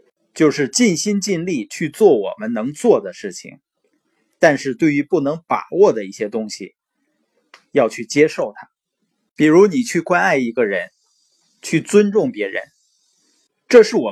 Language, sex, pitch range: Chinese, male, 140-225 Hz